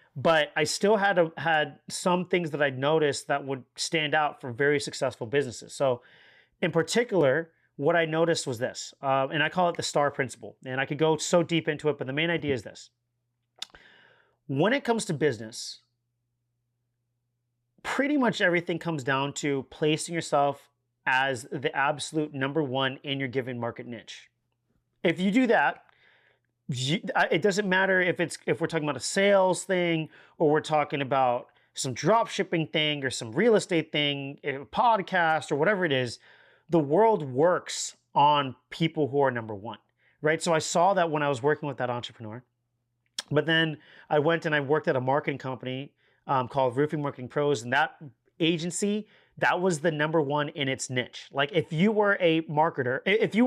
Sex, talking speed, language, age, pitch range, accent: male, 180 wpm, English, 30-49, 130-165 Hz, American